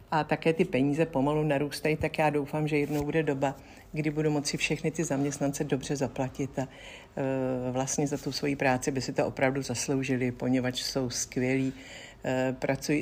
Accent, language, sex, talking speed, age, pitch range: native, Czech, female, 165 wpm, 60-79, 145-165 Hz